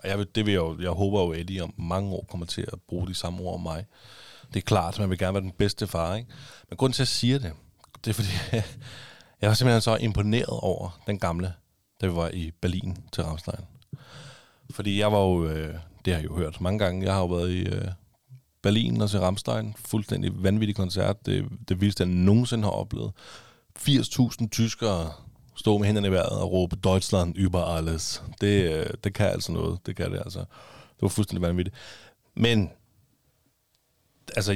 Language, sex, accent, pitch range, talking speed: Danish, male, native, 90-110 Hz, 200 wpm